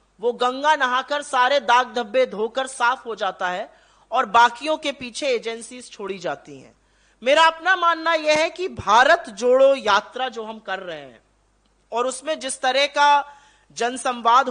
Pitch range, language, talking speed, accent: 230-290 Hz, Hindi, 160 wpm, native